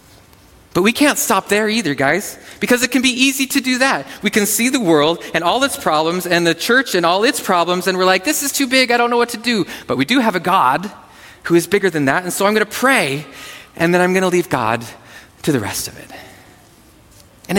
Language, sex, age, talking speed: English, male, 30-49, 255 wpm